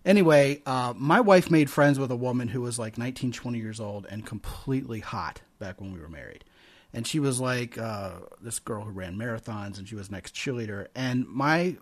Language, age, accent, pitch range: English, 30-49, American, 110-145 Hz